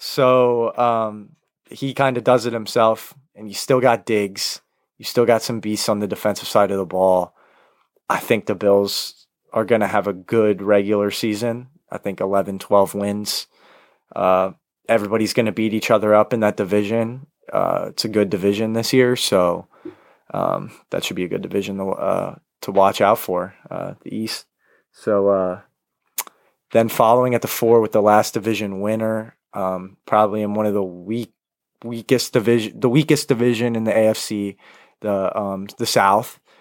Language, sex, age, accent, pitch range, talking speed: English, male, 20-39, American, 100-115 Hz, 175 wpm